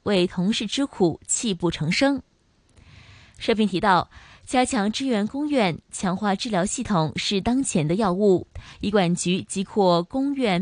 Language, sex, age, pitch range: Chinese, female, 20-39, 170-230 Hz